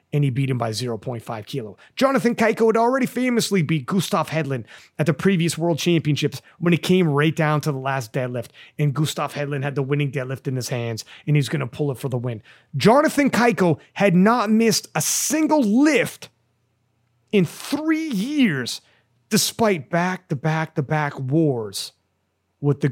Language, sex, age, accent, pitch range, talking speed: English, male, 30-49, American, 130-180 Hz, 170 wpm